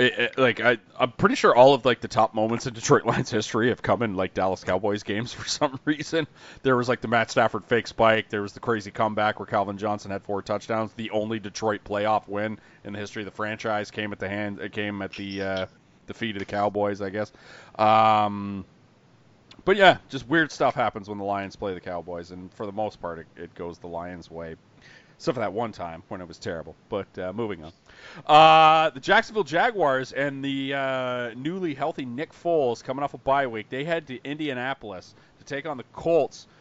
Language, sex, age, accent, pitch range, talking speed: English, male, 30-49, American, 100-130 Hz, 220 wpm